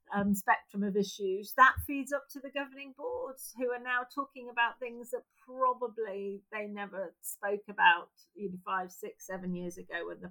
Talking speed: 175 wpm